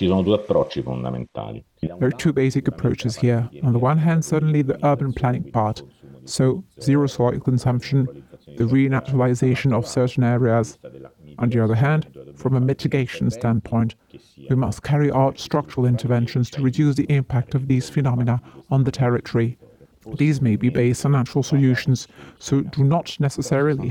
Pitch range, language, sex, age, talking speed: 120-140 Hz, English, male, 50-69, 150 wpm